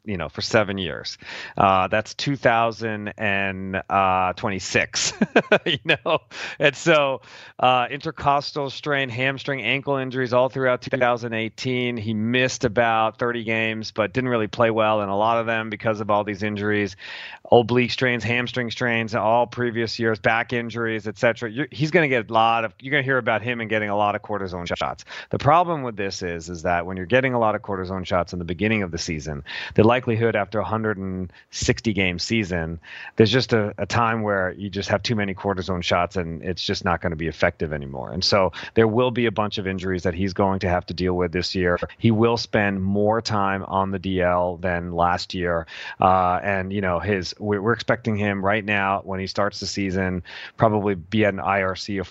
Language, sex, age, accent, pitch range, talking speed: English, male, 40-59, American, 95-115 Hz, 200 wpm